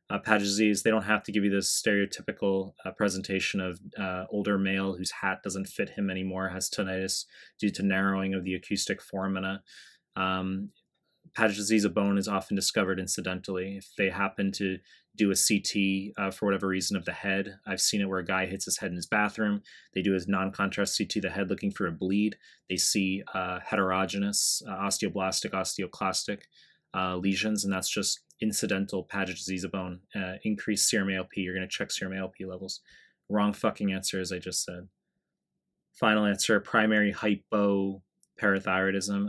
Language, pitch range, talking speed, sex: English, 95-105 Hz, 180 wpm, male